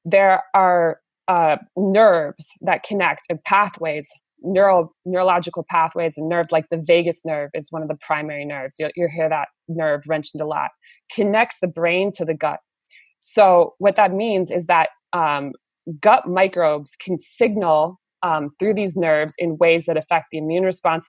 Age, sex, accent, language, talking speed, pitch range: 20-39, female, American, English, 165 wpm, 155-185 Hz